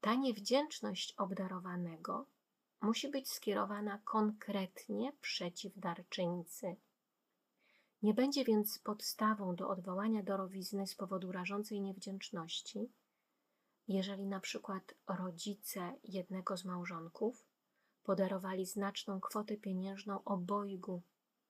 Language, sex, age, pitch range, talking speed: Polish, female, 30-49, 185-225 Hz, 90 wpm